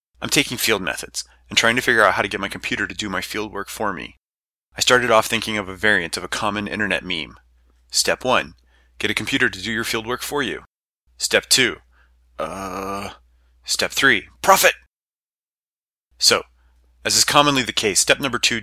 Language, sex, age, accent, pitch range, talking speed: English, male, 30-49, American, 95-115 Hz, 190 wpm